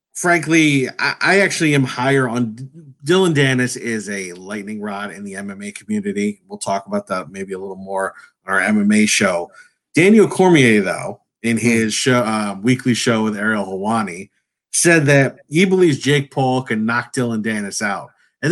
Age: 30-49